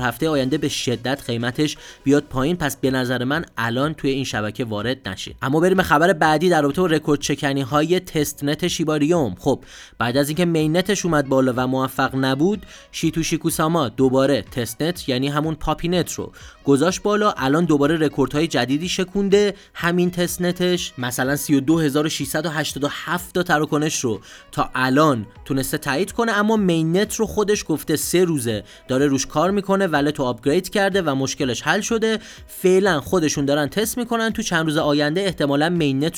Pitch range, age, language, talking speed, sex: 130-180 Hz, 20-39, Persian, 165 wpm, male